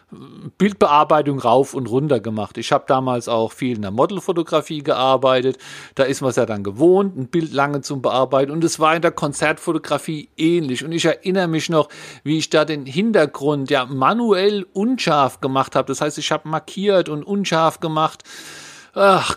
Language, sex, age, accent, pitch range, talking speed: German, male, 50-69, German, 130-160 Hz, 175 wpm